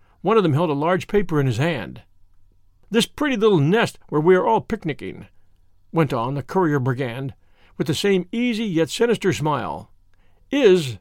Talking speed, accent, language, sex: 175 wpm, American, English, male